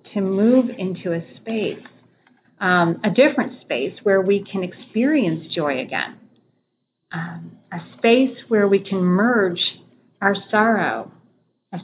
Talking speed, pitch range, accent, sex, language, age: 125 wpm, 190-240 Hz, American, female, English, 40-59